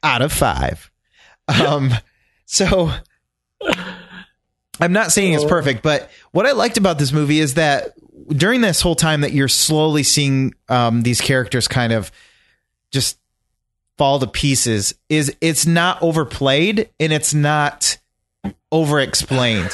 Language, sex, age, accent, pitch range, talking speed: English, male, 30-49, American, 125-165 Hz, 135 wpm